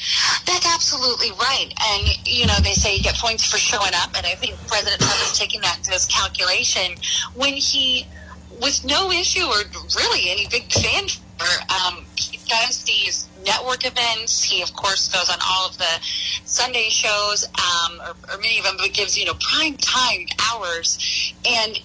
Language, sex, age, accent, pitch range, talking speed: English, female, 30-49, American, 180-265 Hz, 180 wpm